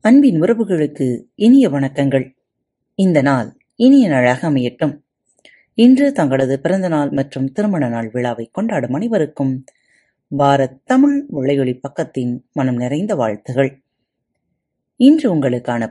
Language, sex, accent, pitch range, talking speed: Tamil, female, native, 135-230 Hz, 100 wpm